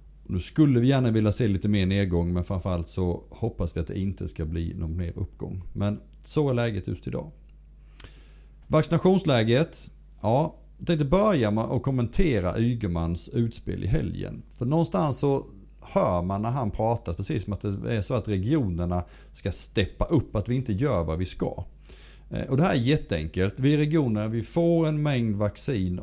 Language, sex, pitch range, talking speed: Swedish, male, 90-125 Hz, 180 wpm